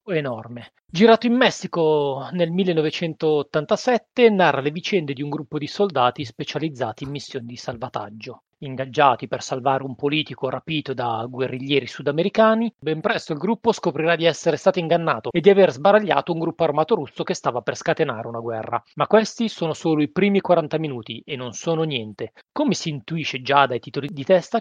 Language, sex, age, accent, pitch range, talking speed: Italian, male, 30-49, native, 130-175 Hz, 175 wpm